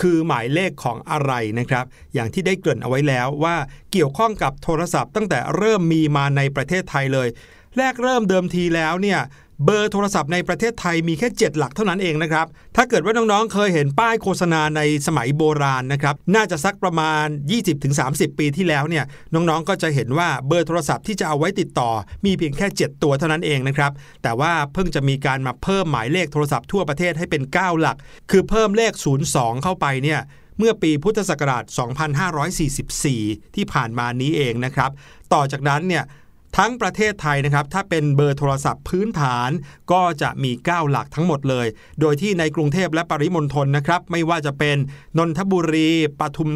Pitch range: 140-180 Hz